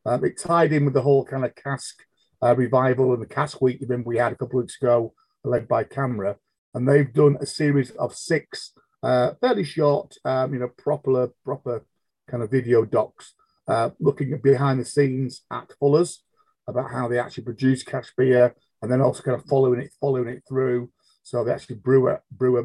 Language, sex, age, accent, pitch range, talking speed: English, male, 40-59, British, 125-150 Hz, 200 wpm